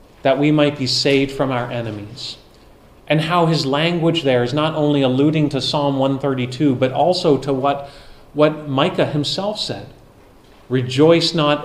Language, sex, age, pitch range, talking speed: English, male, 30-49, 125-150 Hz, 155 wpm